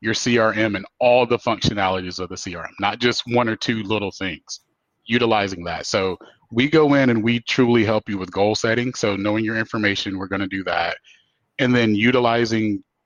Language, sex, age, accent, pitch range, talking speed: English, male, 30-49, American, 100-130 Hz, 190 wpm